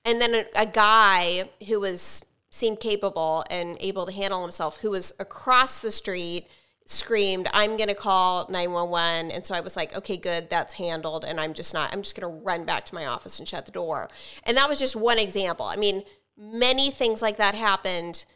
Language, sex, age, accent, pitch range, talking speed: English, female, 30-49, American, 180-220 Hz, 210 wpm